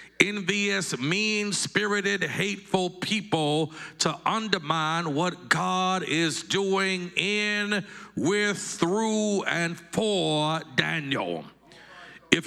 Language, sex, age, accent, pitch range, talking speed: English, male, 50-69, American, 165-205 Hz, 80 wpm